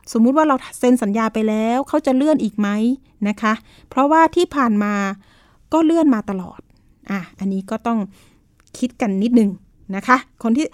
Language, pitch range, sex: Thai, 205-265 Hz, female